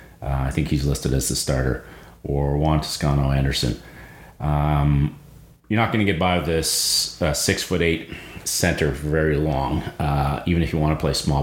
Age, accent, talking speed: 30-49, American, 175 wpm